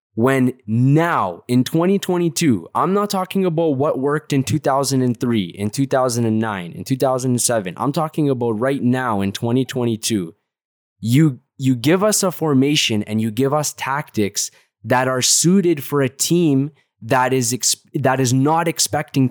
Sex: male